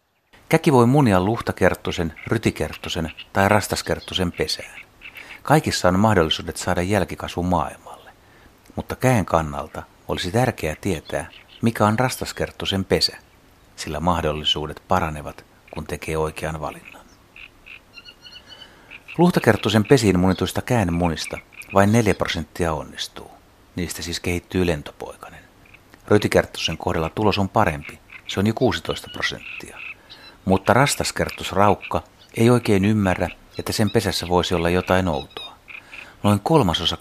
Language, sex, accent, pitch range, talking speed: Finnish, male, native, 85-105 Hz, 110 wpm